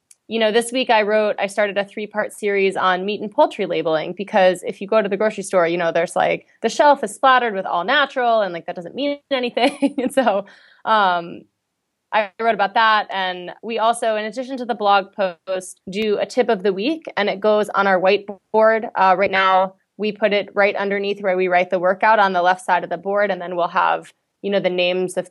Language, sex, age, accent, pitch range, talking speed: English, female, 20-39, American, 180-215 Hz, 230 wpm